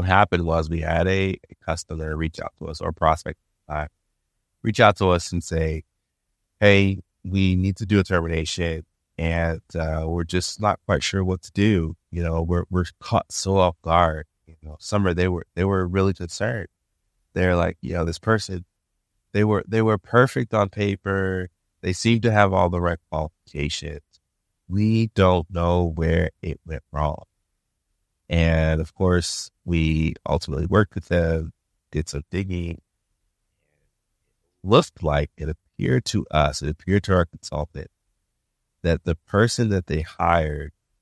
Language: English